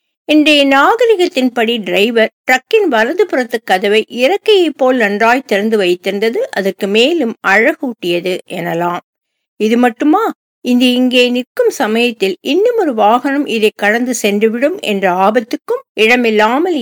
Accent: native